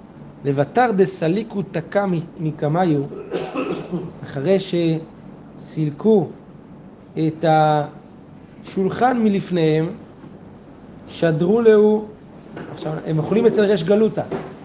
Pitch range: 150-190 Hz